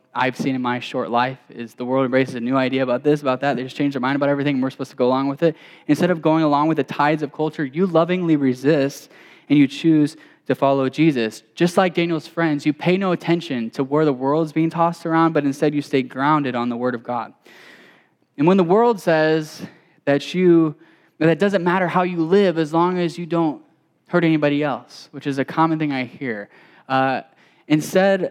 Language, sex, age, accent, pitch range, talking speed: English, male, 10-29, American, 140-175 Hz, 225 wpm